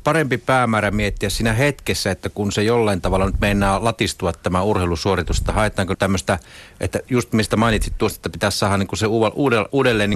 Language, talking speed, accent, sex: Finnish, 165 wpm, native, male